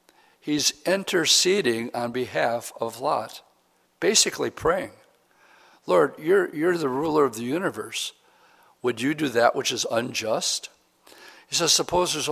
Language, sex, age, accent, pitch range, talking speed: English, male, 60-79, American, 120-175 Hz, 130 wpm